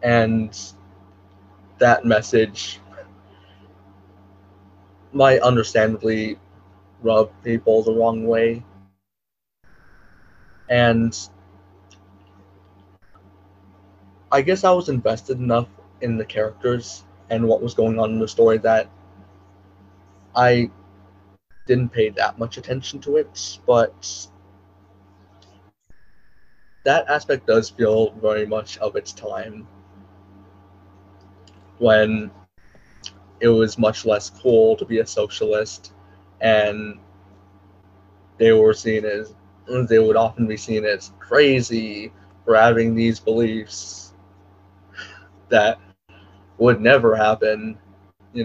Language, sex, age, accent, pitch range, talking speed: English, male, 20-39, American, 95-115 Hz, 95 wpm